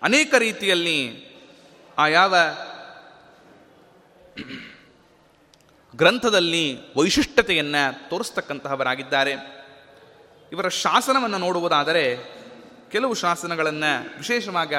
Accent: native